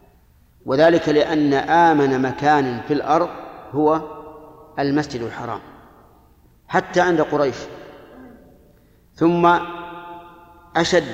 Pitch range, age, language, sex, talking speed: 130-155 Hz, 50-69, Arabic, male, 75 wpm